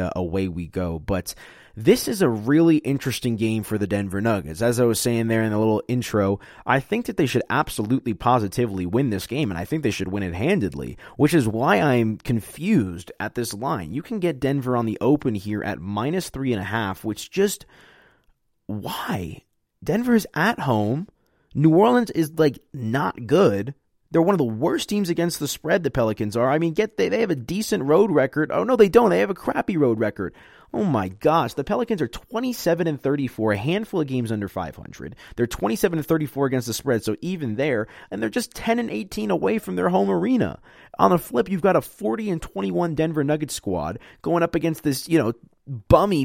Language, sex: English, male